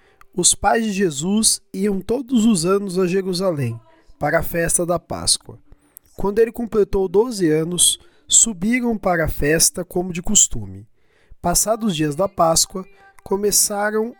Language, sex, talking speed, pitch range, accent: Portuguese, male, 140 wpm, 175-220 Hz, Brazilian